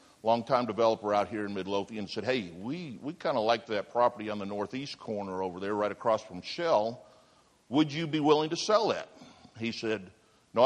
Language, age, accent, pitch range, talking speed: English, 60-79, American, 110-150 Hz, 190 wpm